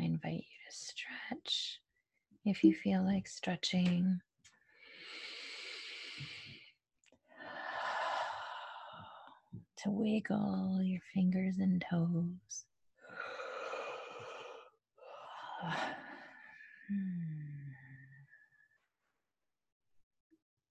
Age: 30-49